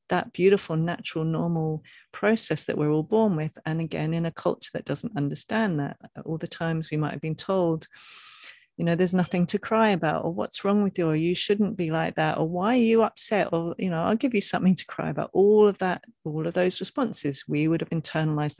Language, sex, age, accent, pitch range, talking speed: English, female, 40-59, British, 155-205 Hz, 230 wpm